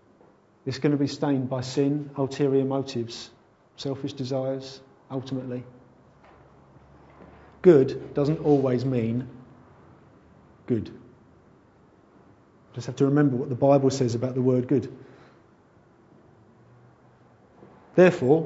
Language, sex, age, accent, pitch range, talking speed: English, male, 40-59, British, 125-145 Hz, 100 wpm